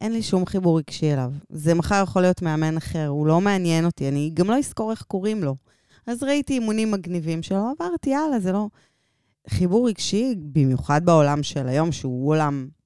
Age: 20-39